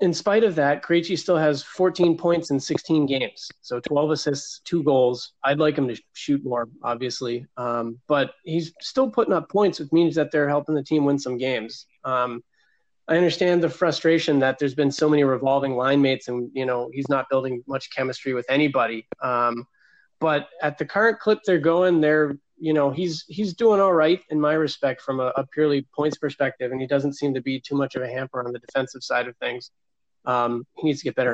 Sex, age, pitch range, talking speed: male, 30-49, 130-155 Hz, 215 wpm